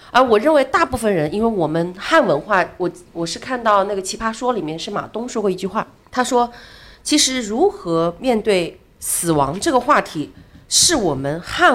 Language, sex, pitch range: Chinese, female, 175-245 Hz